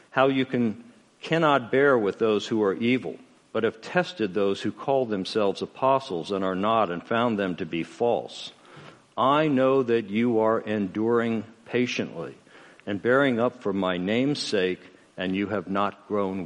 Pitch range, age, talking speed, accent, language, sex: 95-120 Hz, 60-79, 170 wpm, American, English, male